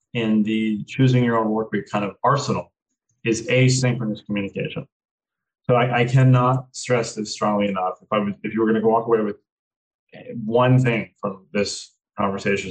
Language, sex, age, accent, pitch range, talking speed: English, male, 30-49, American, 105-130 Hz, 175 wpm